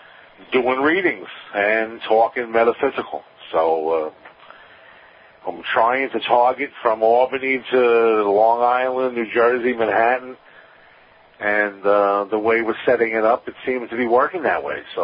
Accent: American